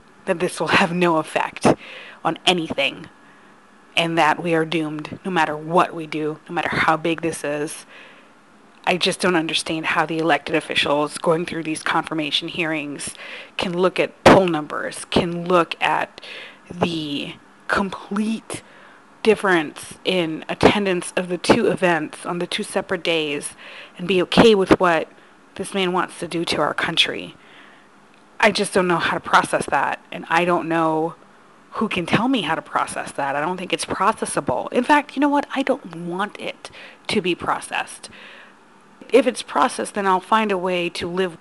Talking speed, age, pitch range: 170 wpm, 30-49, 160-190 Hz